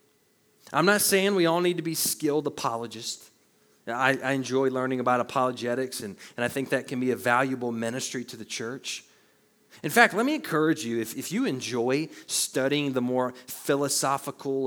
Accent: American